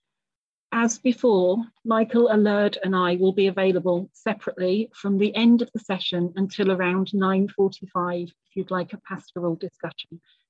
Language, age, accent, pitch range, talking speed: English, 40-59, British, 175-215 Hz, 145 wpm